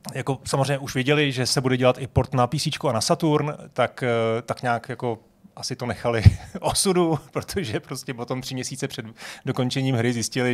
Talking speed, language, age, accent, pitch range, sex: 180 wpm, Czech, 30-49, native, 115-130 Hz, male